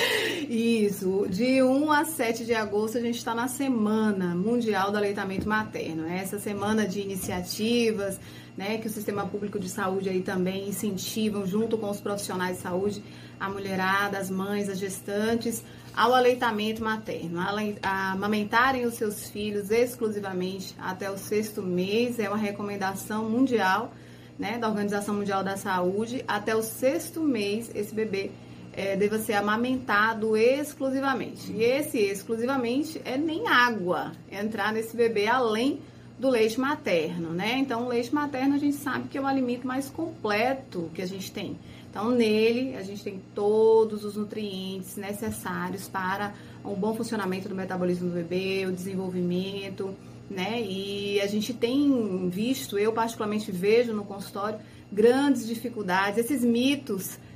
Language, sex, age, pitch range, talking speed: Portuguese, female, 20-39, 195-235 Hz, 150 wpm